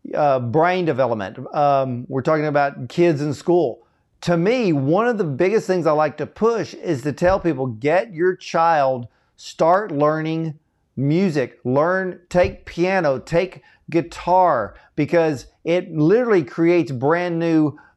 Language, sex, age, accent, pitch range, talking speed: English, male, 40-59, American, 140-175 Hz, 145 wpm